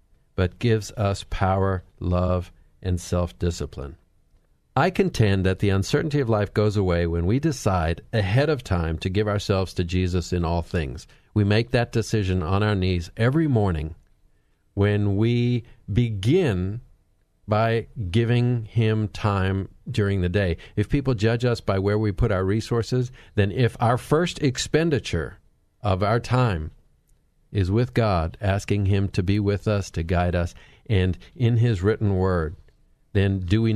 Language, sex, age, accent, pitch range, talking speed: English, male, 50-69, American, 90-120 Hz, 155 wpm